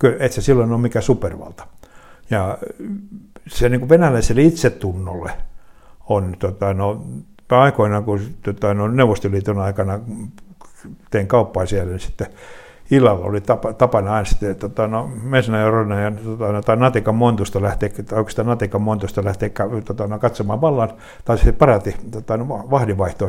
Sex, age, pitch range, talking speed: male, 60-79, 100-120 Hz, 105 wpm